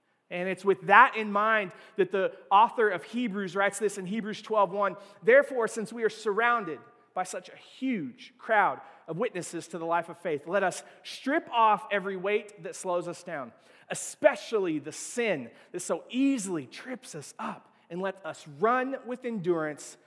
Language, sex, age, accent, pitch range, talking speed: English, male, 30-49, American, 175-255 Hz, 175 wpm